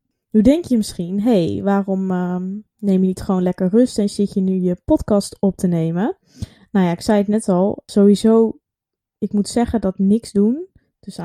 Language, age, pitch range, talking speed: Dutch, 20-39, 185-220 Hz, 205 wpm